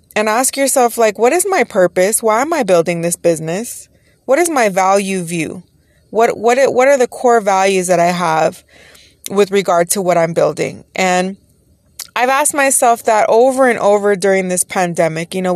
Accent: American